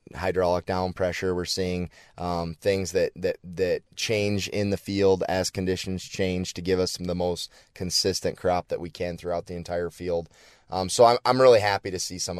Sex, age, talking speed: male, 20-39, 195 wpm